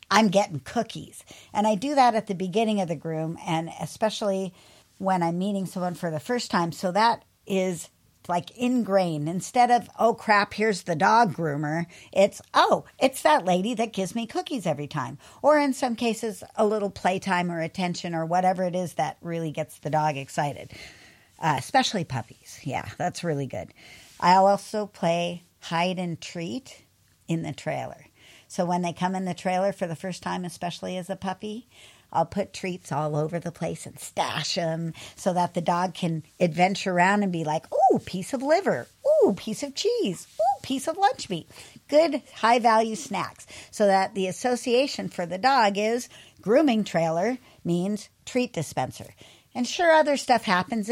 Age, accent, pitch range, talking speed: 50-69, American, 170-225 Hz, 175 wpm